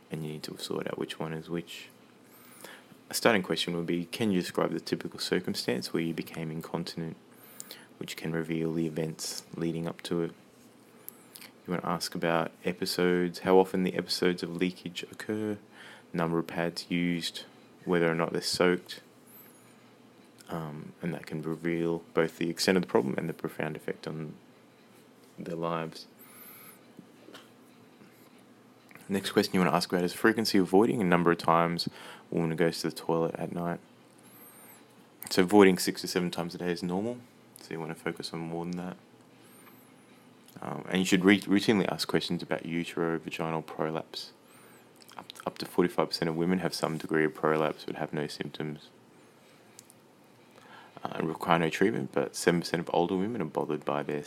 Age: 20-39